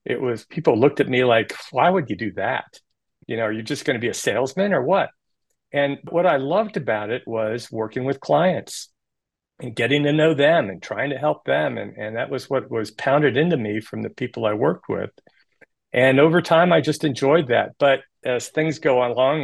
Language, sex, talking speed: English, male, 220 wpm